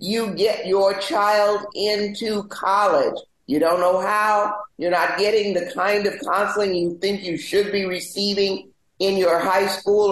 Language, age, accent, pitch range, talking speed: English, 50-69, American, 175-210 Hz, 160 wpm